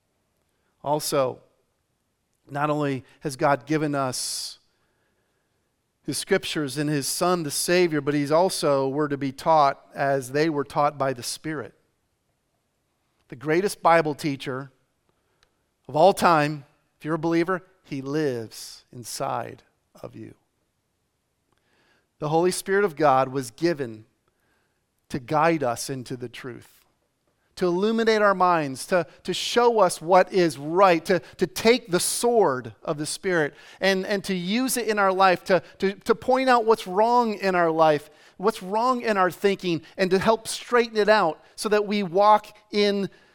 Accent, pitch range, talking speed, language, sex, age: American, 145-195 Hz, 150 wpm, English, male, 40-59